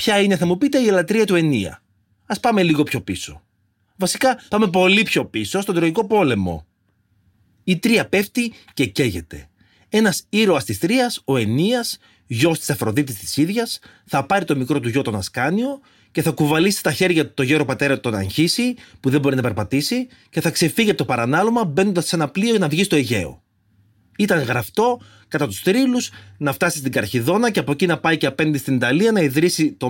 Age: 30-49